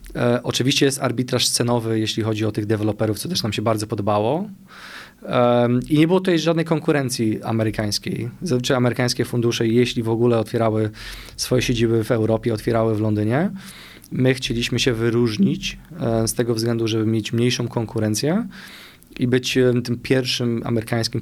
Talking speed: 145 wpm